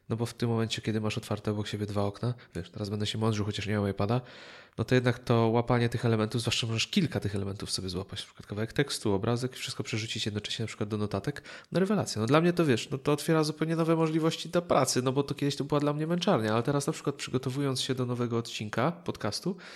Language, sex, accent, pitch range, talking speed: Polish, male, native, 105-130 Hz, 250 wpm